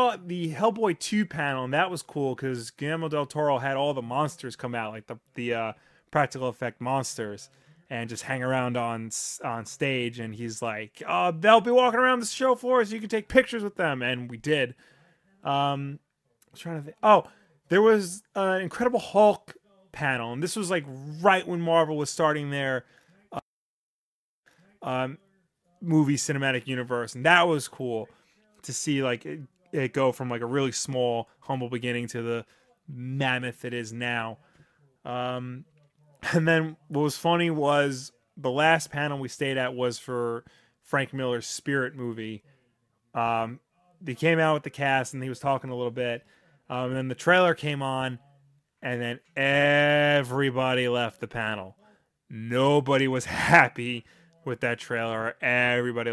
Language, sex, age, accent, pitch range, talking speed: English, male, 30-49, American, 125-160 Hz, 170 wpm